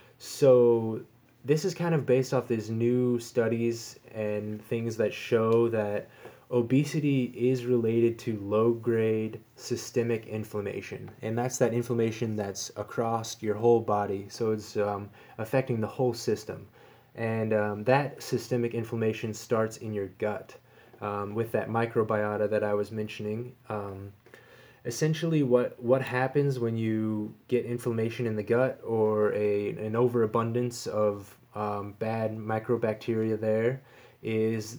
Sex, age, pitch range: male, 20-39, 105-120 Hz